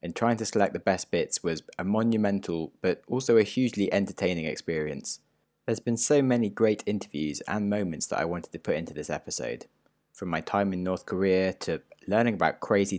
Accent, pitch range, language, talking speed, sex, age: British, 85-115 Hz, English, 195 wpm, male, 20-39